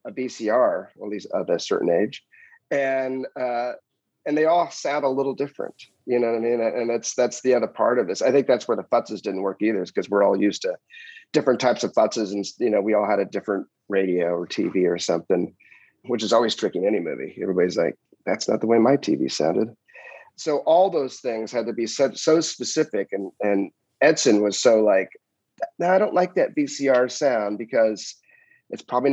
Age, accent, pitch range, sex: 40-59, American, 110-150 Hz, male